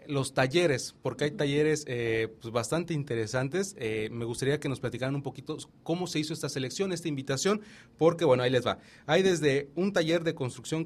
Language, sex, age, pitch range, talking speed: English, male, 30-49, 120-155 Hz, 195 wpm